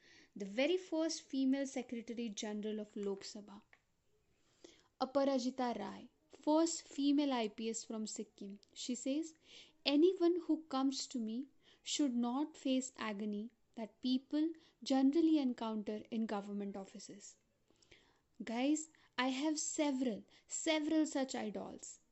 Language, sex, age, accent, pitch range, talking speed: English, female, 10-29, Indian, 220-290 Hz, 110 wpm